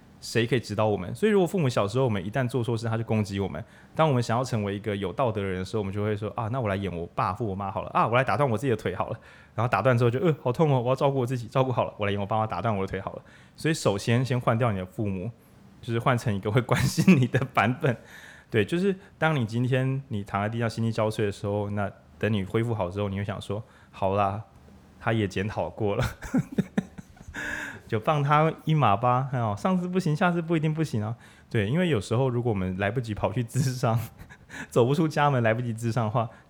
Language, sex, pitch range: Chinese, male, 100-130 Hz